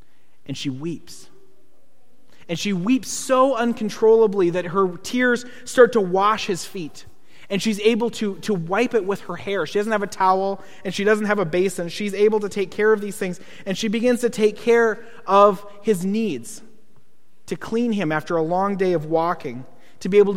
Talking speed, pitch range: 195 wpm, 160-205 Hz